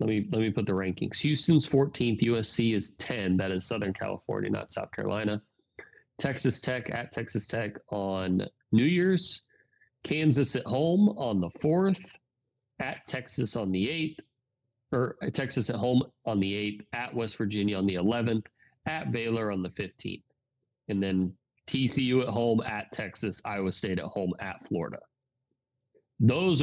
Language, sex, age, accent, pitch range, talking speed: English, male, 30-49, American, 105-130 Hz, 160 wpm